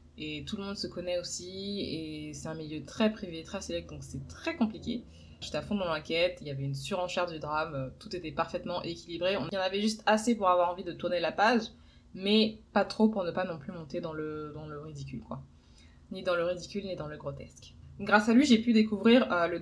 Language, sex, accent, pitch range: French, female, French, 150-200 Hz